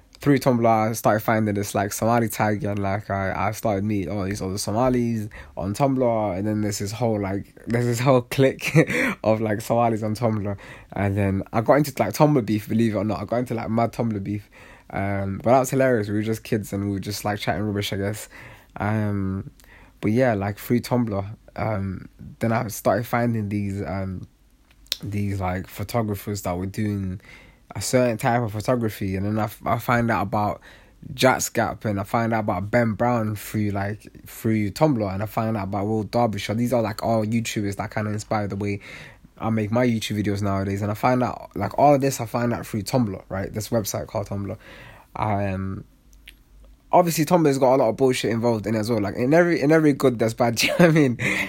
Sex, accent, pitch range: male, British, 100-120 Hz